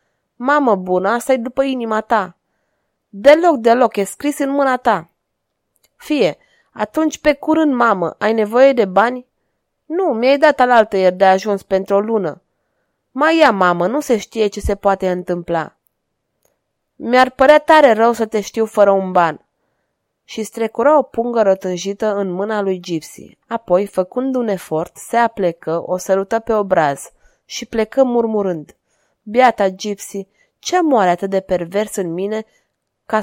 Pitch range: 195-245 Hz